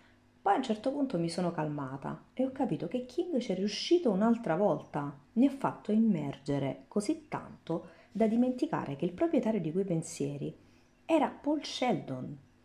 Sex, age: female, 40-59